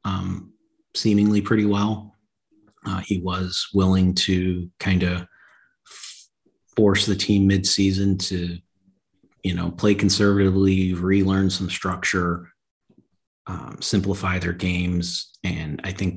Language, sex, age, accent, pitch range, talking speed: English, male, 30-49, American, 85-95 Hz, 110 wpm